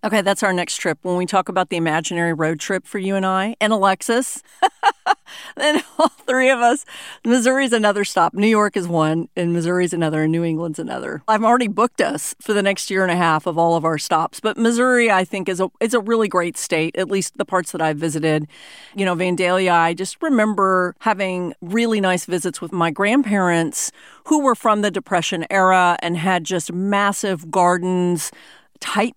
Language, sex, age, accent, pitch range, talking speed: English, female, 40-59, American, 170-210 Hz, 200 wpm